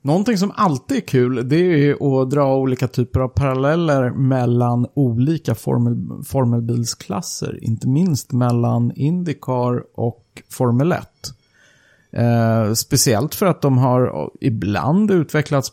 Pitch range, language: 120-150 Hz, Swedish